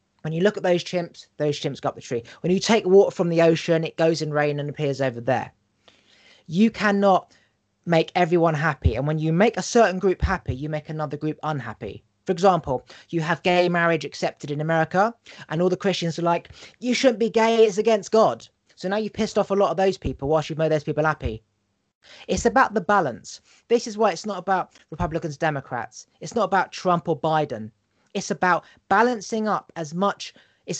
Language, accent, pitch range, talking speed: English, British, 135-195 Hz, 210 wpm